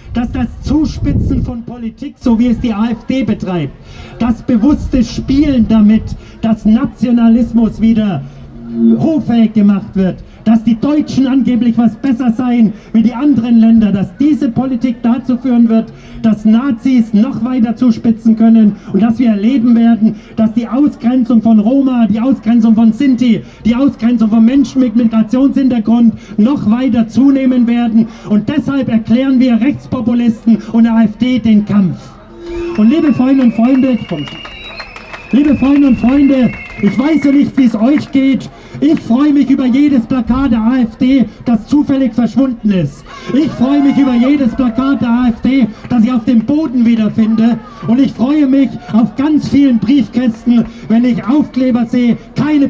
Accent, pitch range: German, 225-265 Hz